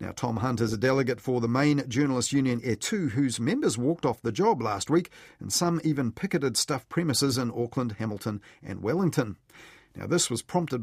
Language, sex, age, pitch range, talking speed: English, male, 40-59, 115-150 Hz, 195 wpm